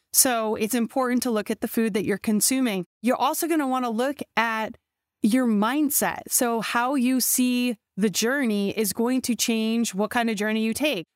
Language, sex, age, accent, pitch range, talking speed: English, female, 30-49, American, 205-245 Hz, 200 wpm